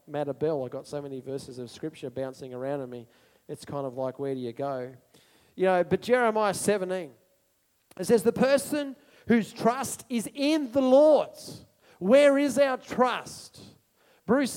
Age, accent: 40-59, Australian